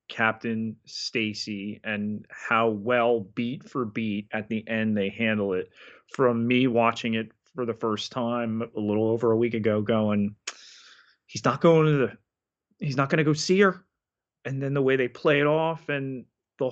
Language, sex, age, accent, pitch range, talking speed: English, male, 30-49, American, 110-150 Hz, 185 wpm